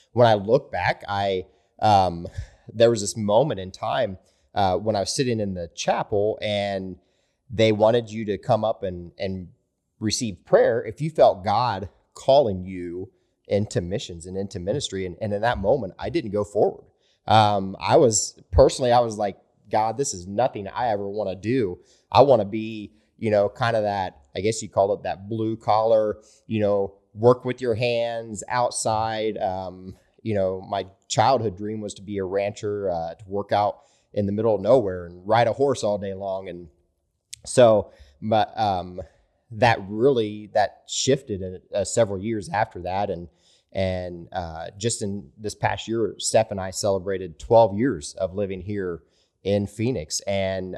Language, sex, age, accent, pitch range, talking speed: English, male, 30-49, American, 95-110 Hz, 180 wpm